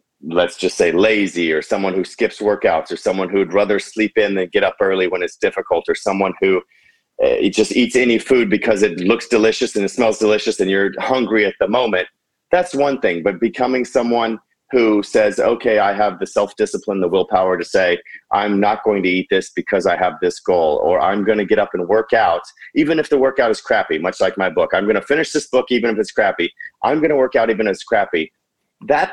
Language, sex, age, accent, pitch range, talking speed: English, male, 40-59, American, 105-145 Hz, 230 wpm